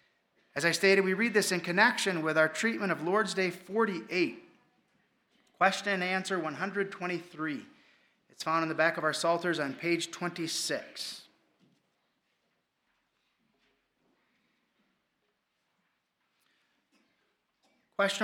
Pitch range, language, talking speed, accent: 155-205 Hz, English, 100 wpm, American